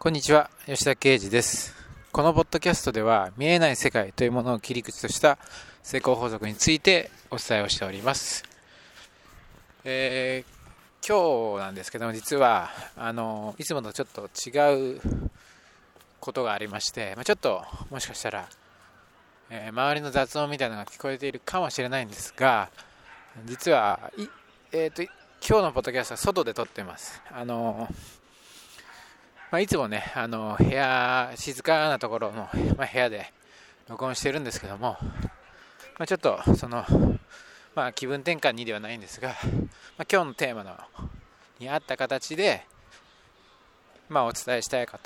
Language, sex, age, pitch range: Japanese, male, 20-39, 115-145 Hz